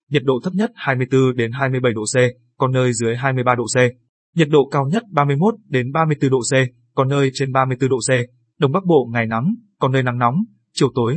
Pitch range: 120-140 Hz